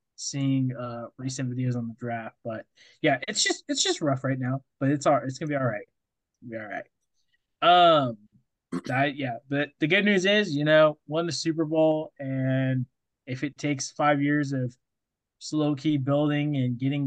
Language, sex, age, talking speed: English, male, 20-39, 190 wpm